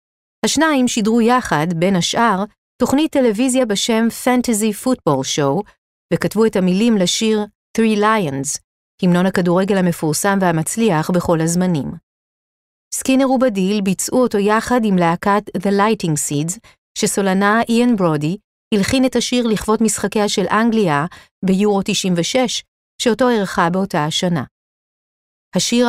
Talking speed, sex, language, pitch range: 115 wpm, female, Hebrew, 180-230 Hz